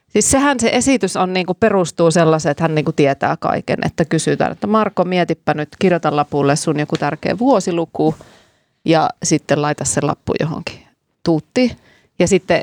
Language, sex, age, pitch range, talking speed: Finnish, female, 30-49, 160-225 Hz, 160 wpm